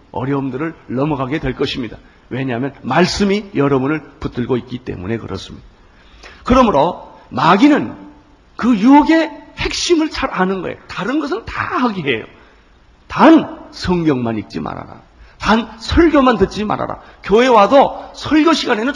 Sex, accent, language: male, native, Korean